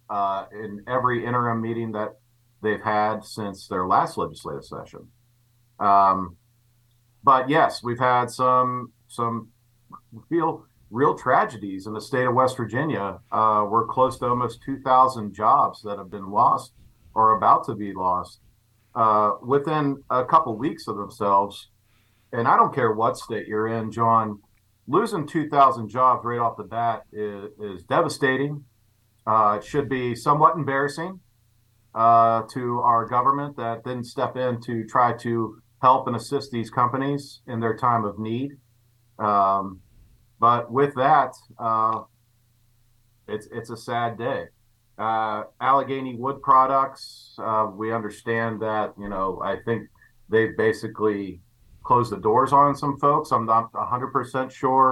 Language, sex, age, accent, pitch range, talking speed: English, male, 50-69, American, 110-125 Hz, 145 wpm